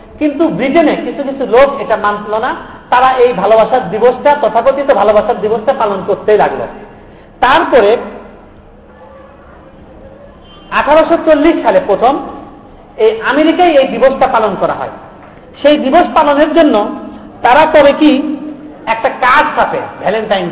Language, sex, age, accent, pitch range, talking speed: Bengali, male, 50-69, native, 230-295 Hz, 120 wpm